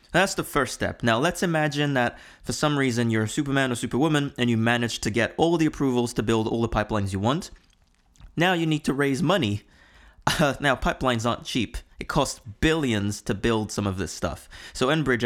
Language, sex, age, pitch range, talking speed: English, male, 20-39, 105-145 Hz, 210 wpm